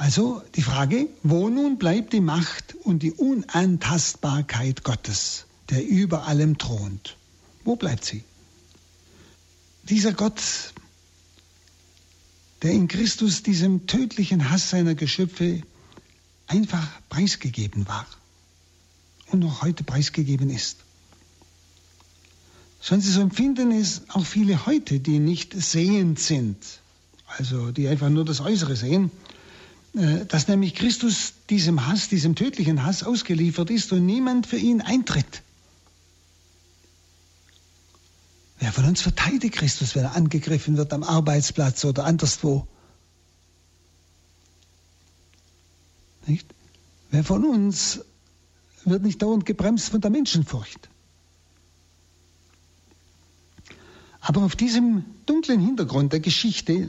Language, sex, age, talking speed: German, male, 60-79, 110 wpm